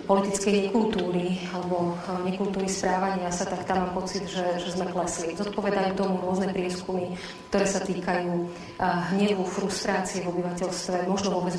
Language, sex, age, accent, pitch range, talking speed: Czech, female, 30-49, native, 180-195 Hz, 145 wpm